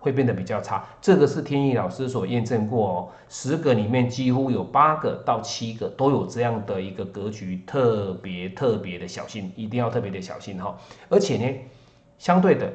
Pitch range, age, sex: 100-130 Hz, 30-49, male